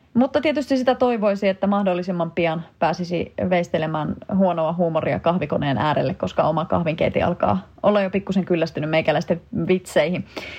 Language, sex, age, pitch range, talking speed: Finnish, female, 30-49, 165-210 Hz, 130 wpm